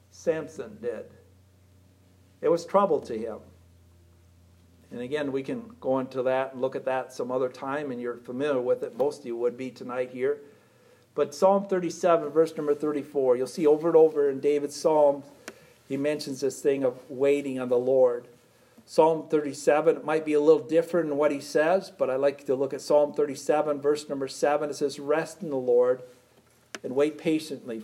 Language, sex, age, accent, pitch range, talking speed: English, male, 50-69, American, 130-180 Hz, 195 wpm